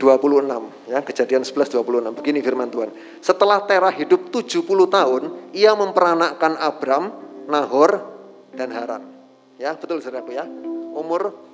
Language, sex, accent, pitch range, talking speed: Indonesian, male, native, 140-205 Hz, 125 wpm